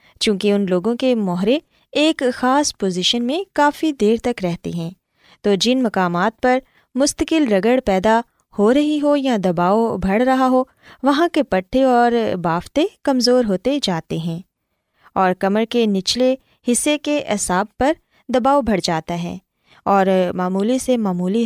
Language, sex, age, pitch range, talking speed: Urdu, female, 20-39, 200-270 Hz, 150 wpm